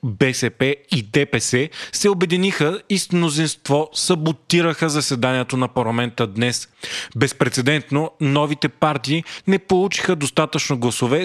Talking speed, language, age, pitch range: 105 wpm, Bulgarian, 30-49, 125-160 Hz